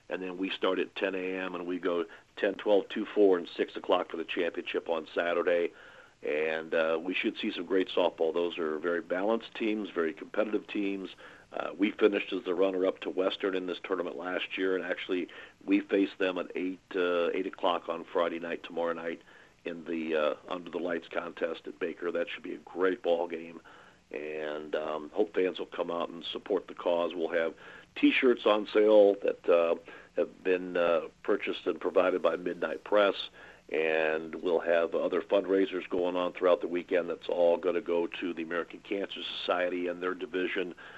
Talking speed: 195 wpm